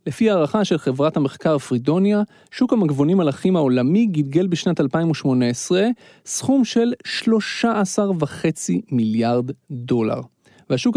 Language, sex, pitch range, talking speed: Hebrew, male, 140-210 Hz, 110 wpm